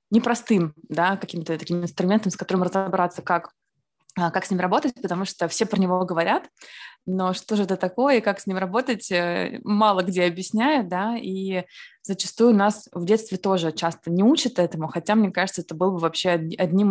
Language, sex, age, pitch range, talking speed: Russian, female, 20-39, 175-215 Hz, 180 wpm